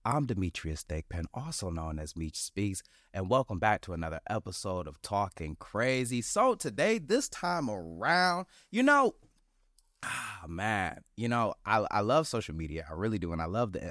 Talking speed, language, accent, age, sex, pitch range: 170 wpm, English, American, 30-49, male, 90-125 Hz